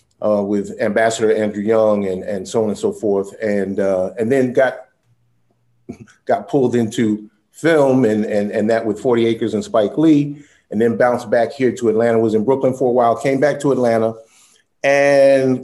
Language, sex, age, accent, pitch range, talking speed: English, male, 40-59, American, 105-125 Hz, 190 wpm